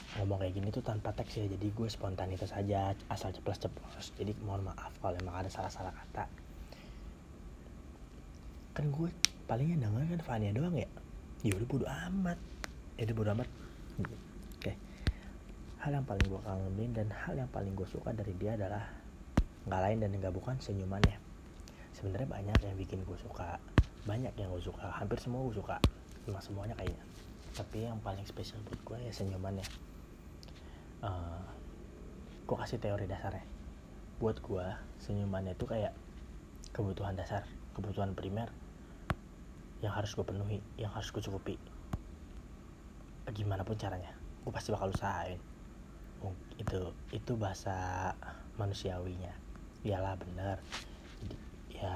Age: 20-39